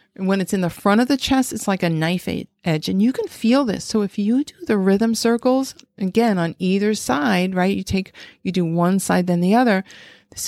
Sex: female